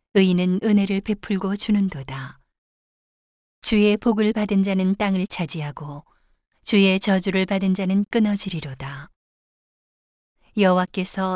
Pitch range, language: 170-205 Hz, Korean